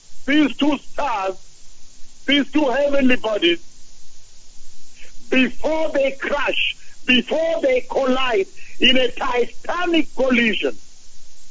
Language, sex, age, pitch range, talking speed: English, male, 60-79, 245-300 Hz, 90 wpm